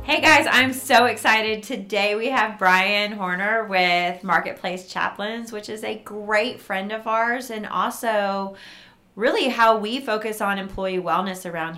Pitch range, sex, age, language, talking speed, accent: 175-210 Hz, female, 30-49, English, 155 wpm, American